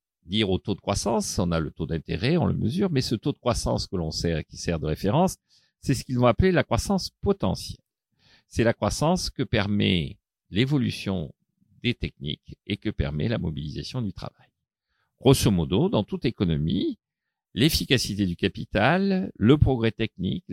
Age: 50-69